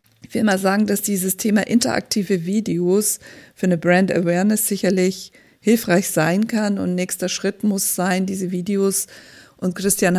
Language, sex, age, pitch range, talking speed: German, female, 50-69, 180-200 Hz, 145 wpm